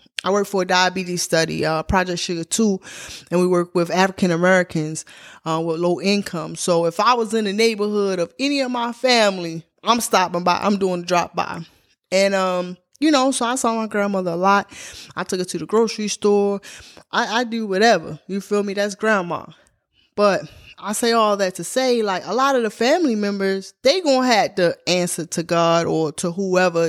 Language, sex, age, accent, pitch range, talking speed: English, female, 20-39, American, 180-225 Hz, 200 wpm